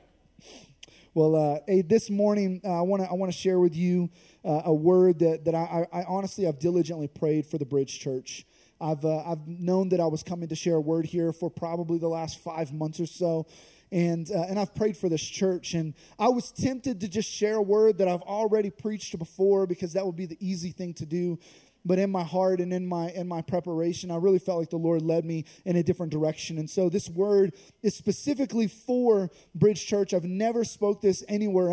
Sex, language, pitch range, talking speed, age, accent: male, English, 170-200 Hz, 220 wpm, 20-39, American